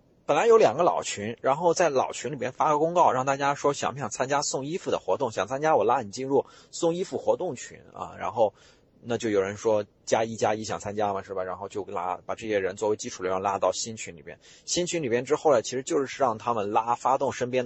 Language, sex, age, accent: Chinese, male, 30-49, native